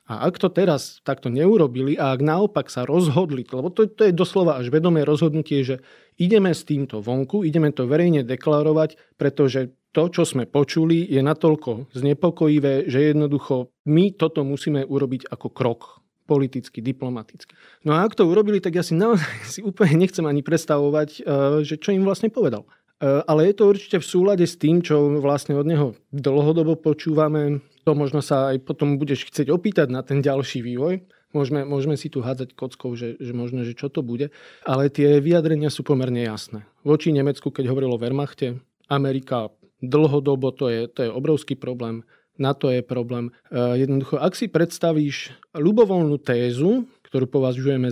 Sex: male